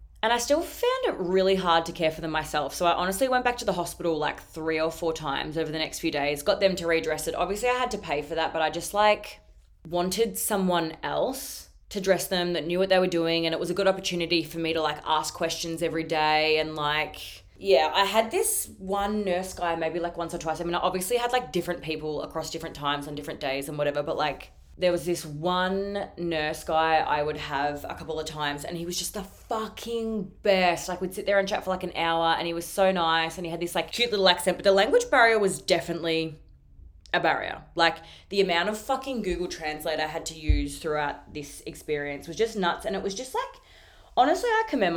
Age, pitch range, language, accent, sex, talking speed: 20-39, 155-195 Hz, English, Australian, female, 240 wpm